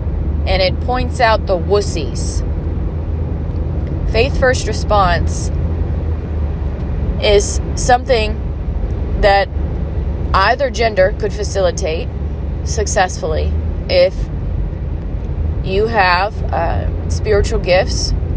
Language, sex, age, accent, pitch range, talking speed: English, female, 20-39, American, 80-85 Hz, 75 wpm